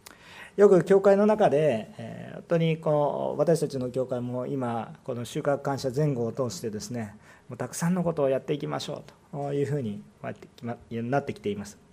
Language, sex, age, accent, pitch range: Japanese, male, 40-59, native, 135-195 Hz